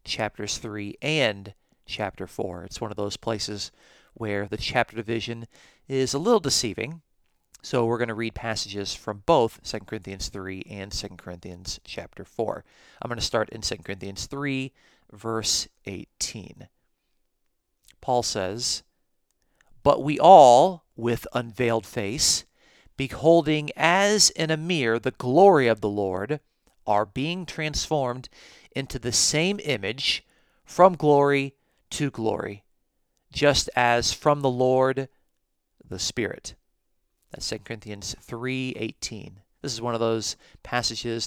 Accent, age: American, 40-59